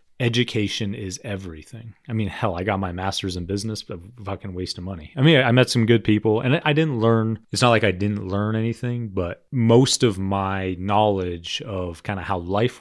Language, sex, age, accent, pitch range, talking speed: English, male, 30-49, American, 90-110 Hz, 215 wpm